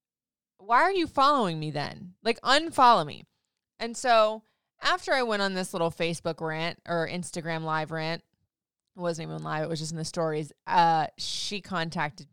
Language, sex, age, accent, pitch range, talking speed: English, female, 20-39, American, 190-265 Hz, 180 wpm